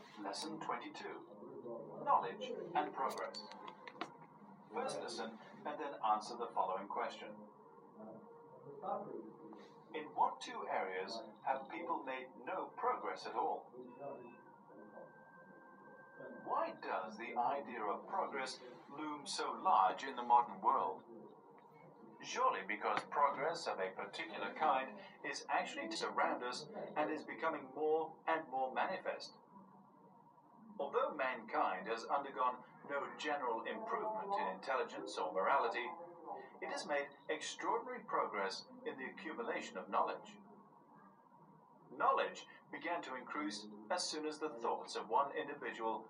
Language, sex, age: Chinese, male, 40-59